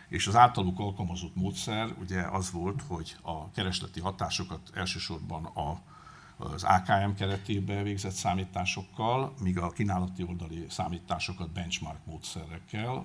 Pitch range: 85-105 Hz